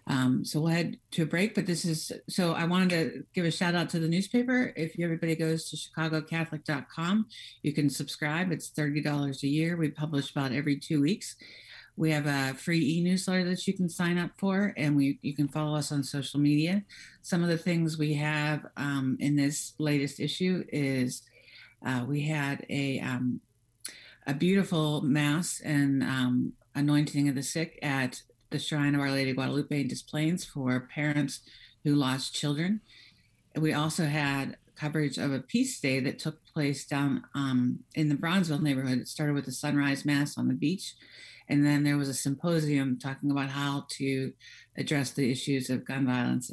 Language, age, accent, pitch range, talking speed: English, 50-69, American, 140-165 Hz, 180 wpm